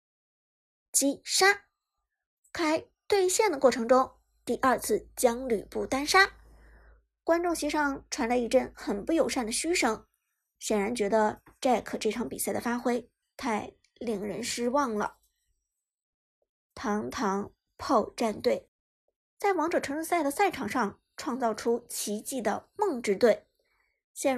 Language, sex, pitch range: Chinese, male, 235-345 Hz